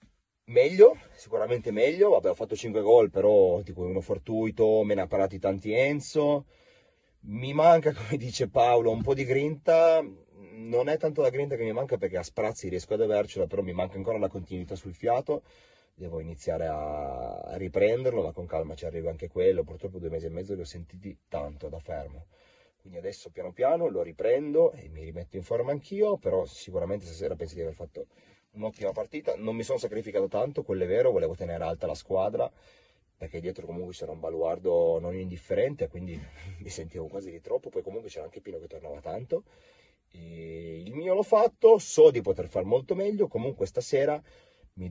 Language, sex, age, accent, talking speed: Italian, male, 30-49, native, 190 wpm